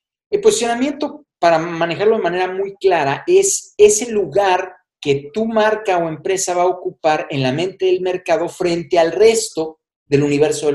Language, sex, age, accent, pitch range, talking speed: Spanish, male, 50-69, Mexican, 165-240 Hz, 165 wpm